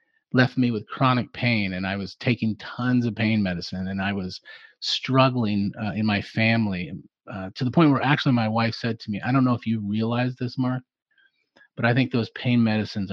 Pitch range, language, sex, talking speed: 100-120 Hz, English, male, 210 wpm